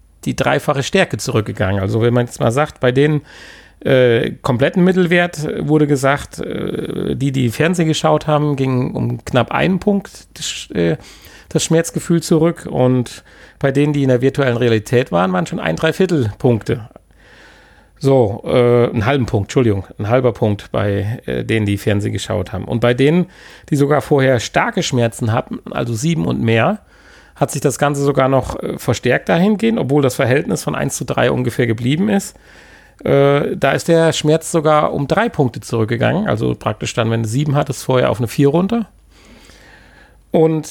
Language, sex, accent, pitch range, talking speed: German, male, German, 120-155 Hz, 170 wpm